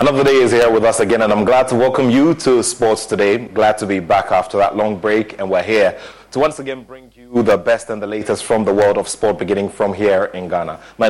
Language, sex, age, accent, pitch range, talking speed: English, male, 30-49, Nigerian, 105-130 Hz, 260 wpm